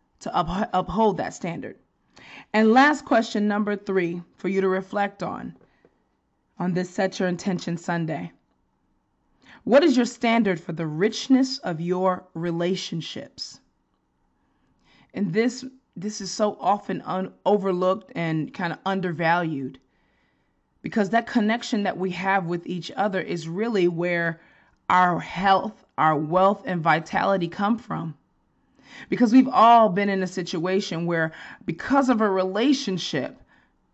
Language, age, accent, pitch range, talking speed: English, 20-39, American, 175-230 Hz, 130 wpm